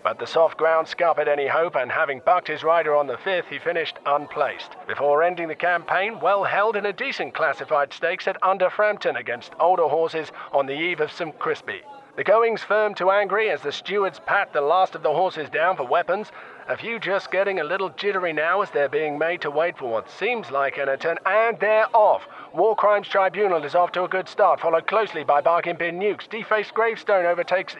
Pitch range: 170-205 Hz